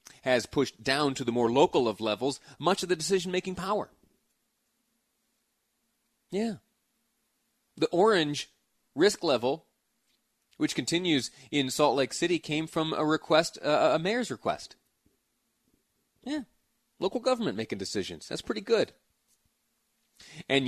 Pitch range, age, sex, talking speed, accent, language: 125-185 Hz, 30-49, male, 125 wpm, American, English